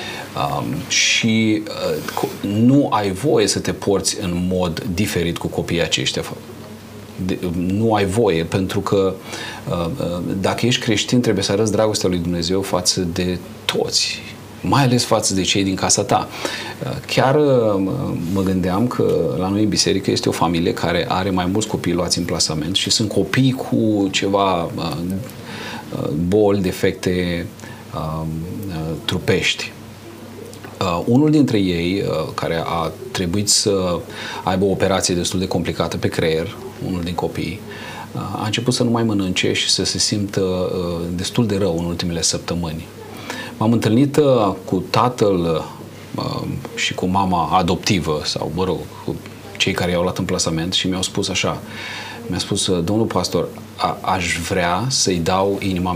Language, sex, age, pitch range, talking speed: Romanian, male, 40-59, 90-110 Hz, 155 wpm